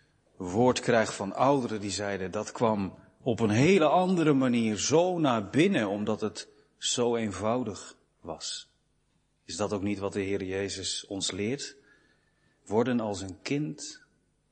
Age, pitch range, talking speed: 40-59, 100-140 Hz, 145 wpm